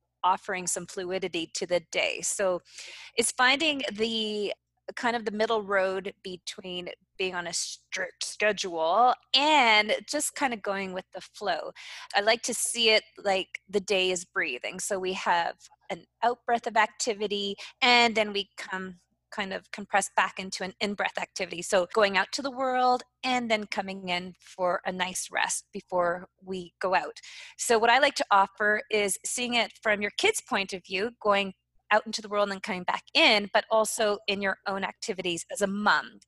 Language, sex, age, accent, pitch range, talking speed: English, female, 20-39, American, 185-225 Hz, 180 wpm